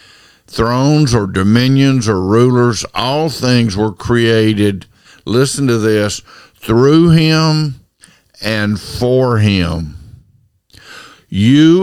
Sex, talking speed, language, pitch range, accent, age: male, 90 wpm, English, 100-130 Hz, American, 50-69